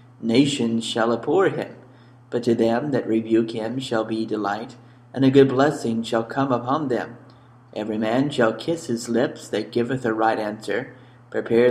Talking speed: 170 wpm